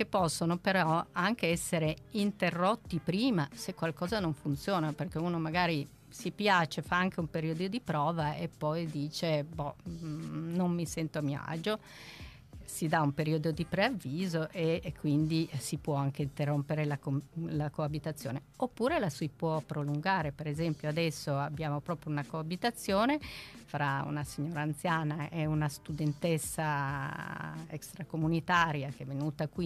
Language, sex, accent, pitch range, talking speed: Italian, female, native, 150-180 Hz, 145 wpm